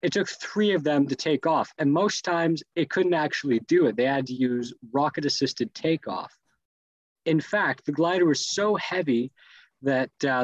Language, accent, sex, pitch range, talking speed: English, American, male, 130-180 Hz, 185 wpm